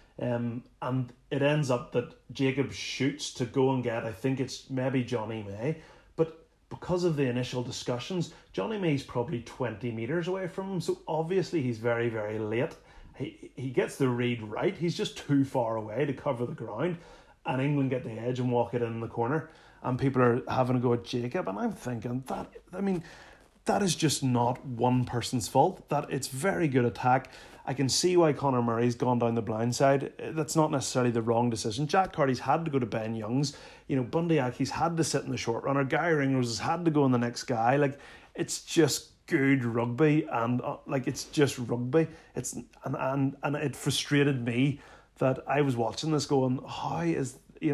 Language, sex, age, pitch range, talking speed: English, male, 30-49, 120-155 Hz, 205 wpm